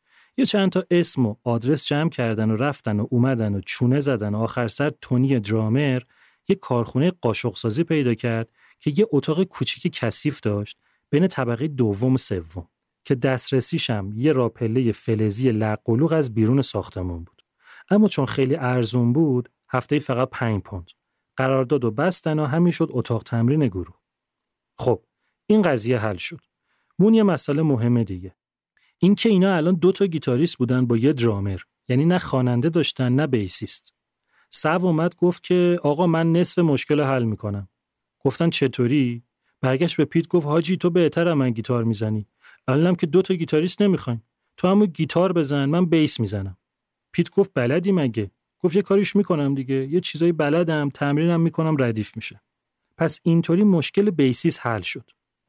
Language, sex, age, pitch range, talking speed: Persian, male, 40-59, 115-170 Hz, 155 wpm